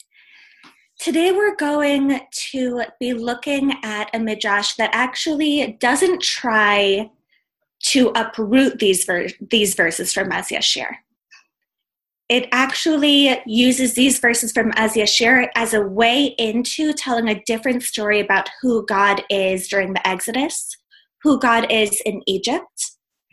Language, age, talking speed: English, 20-39, 130 wpm